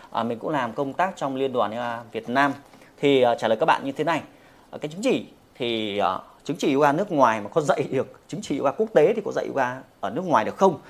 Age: 20-39